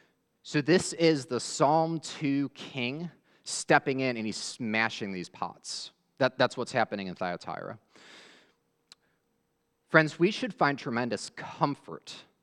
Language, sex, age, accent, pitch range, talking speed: English, male, 30-49, American, 110-145 Hz, 120 wpm